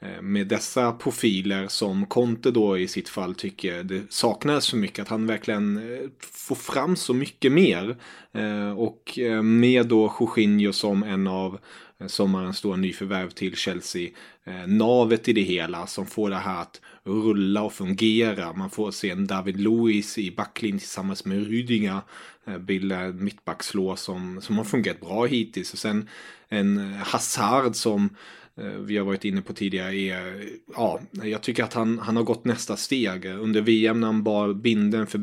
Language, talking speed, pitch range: English, 160 wpm, 100-115 Hz